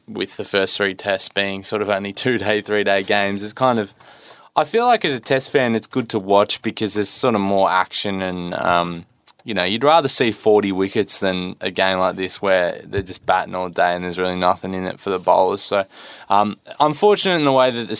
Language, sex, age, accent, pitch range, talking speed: English, male, 20-39, Australian, 95-110 Hz, 235 wpm